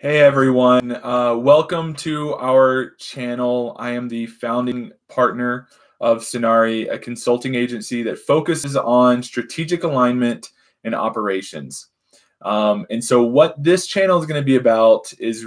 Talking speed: 135 wpm